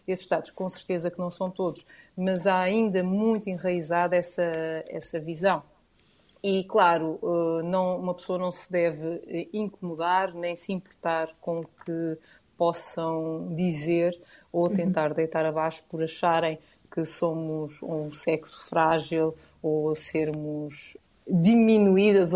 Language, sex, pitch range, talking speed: Portuguese, female, 165-195 Hz, 125 wpm